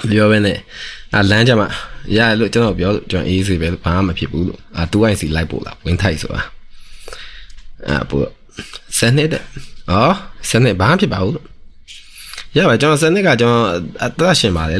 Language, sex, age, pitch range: English, male, 20-39, 85-105 Hz